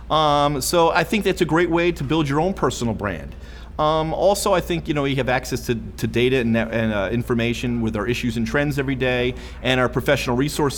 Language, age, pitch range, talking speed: English, 40-59, 115-175 Hz, 230 wpm